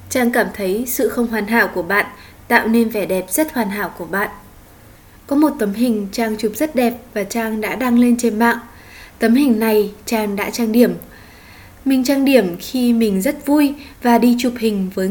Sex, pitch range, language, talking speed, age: female, 205-245 Hz, Vietnamese, 205 wpm, 20-39